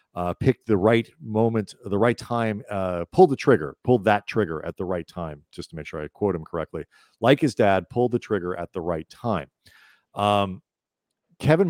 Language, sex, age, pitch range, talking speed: English, male, 40-59, 85-110 Hz, 200 wpm